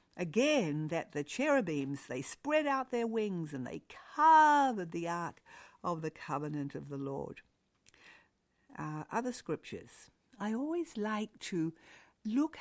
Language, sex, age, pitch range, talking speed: English, female, 60-79, 170-250 Hz, 135 wpm